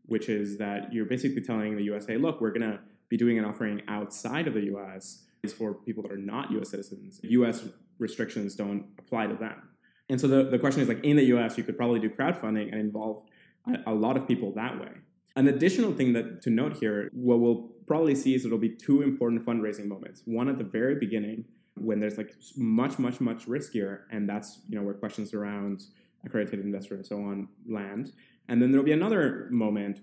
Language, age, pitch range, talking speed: English, 20-39, 105-125 Hz, 210 wpm